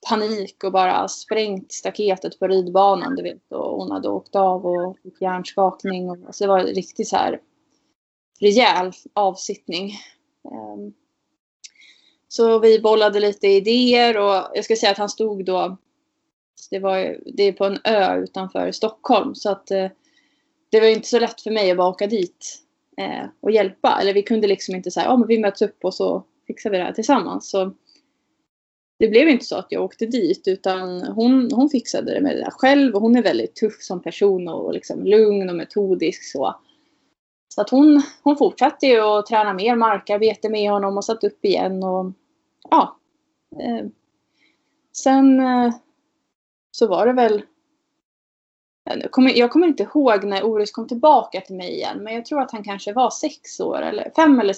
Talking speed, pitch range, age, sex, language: 175 wpm, 195-275 Hz, 20-39, female, Swedish